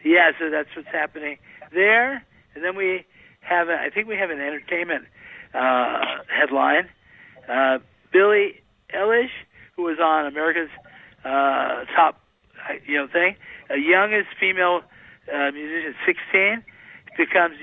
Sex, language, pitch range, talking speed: male, English, 150-195 Hz, 130 wpm